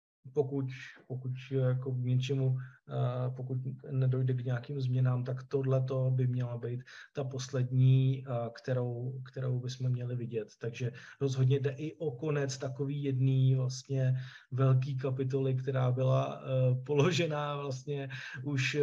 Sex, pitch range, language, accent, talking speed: male, 125-135 Hz, Czech, native, 120 wpm